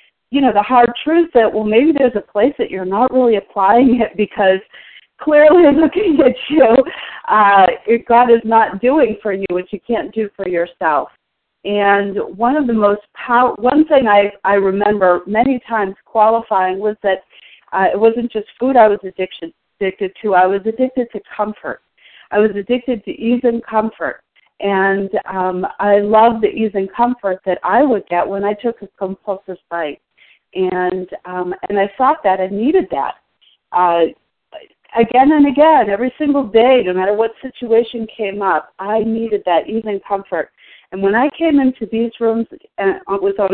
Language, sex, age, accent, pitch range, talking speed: English, female, 40-59, American, 195-235 Hz, 180 wpm